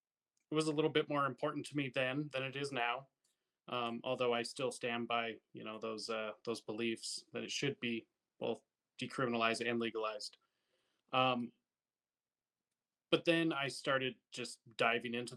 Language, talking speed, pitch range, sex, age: English, 165 wpm, 115-135 Hz, male, 20-39